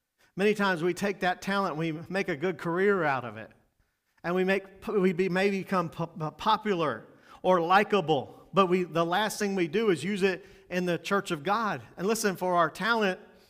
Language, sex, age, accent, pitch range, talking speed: English, male, 40-59, American, 175-210 Hz, 190 wpm